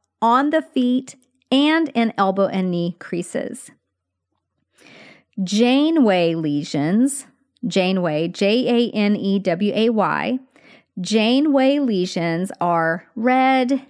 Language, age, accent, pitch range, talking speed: English, 40-59, American, 180-255 Hz, 75 wpm